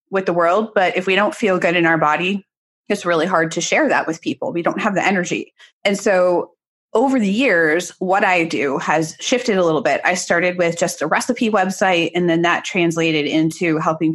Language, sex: English, female